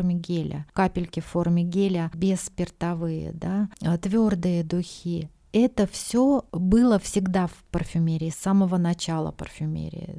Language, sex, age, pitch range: Russian, female, 30-49, 170-200 Hz